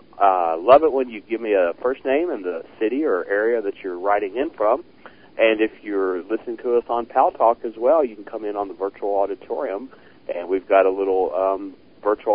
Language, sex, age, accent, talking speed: English, male, 40-59, American, 230 wpm